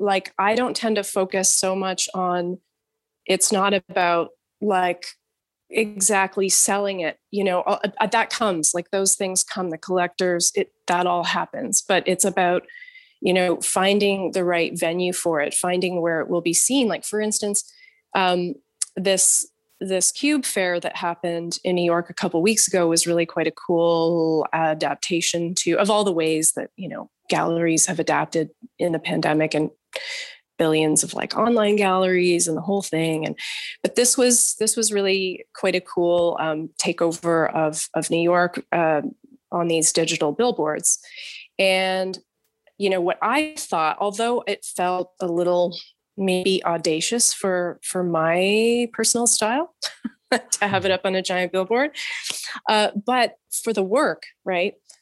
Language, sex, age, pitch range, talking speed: English, female, 30-49, 170-215 Hz, 160 wpm